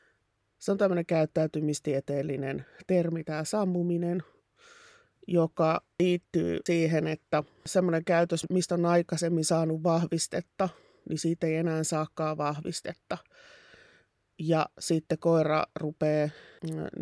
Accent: native